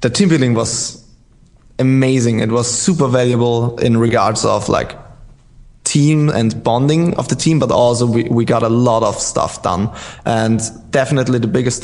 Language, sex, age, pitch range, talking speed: English, male, 20-39, 115-130 Hz, 165 wpm